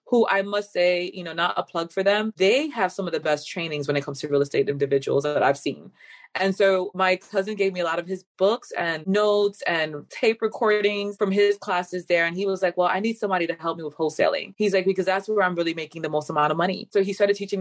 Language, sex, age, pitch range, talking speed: English, female, 20-39, 165-195 Hz, 265 wpm